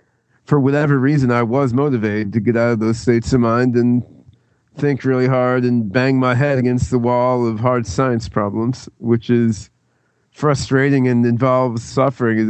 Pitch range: 115-130 Hz